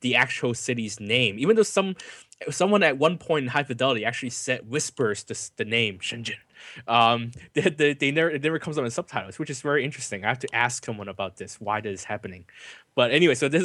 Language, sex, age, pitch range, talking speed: English, male, 20-39, 105-135 Hz, 225 wpm